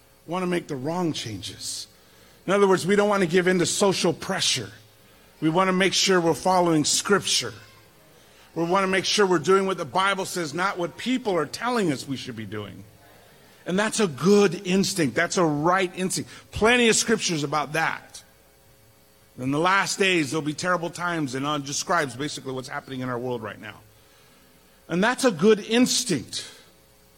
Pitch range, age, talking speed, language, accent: 115-190 Hz, 50-69, 190 wpm, English, American